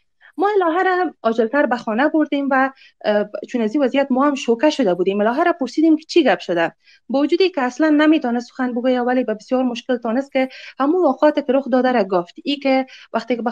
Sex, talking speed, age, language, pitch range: female, 210 wpm, 30-49, Persian, 220-300 Hz